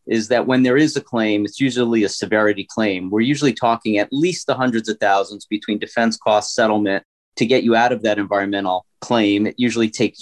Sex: male